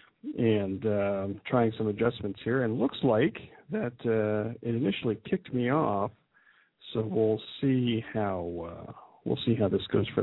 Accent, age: American, 40-59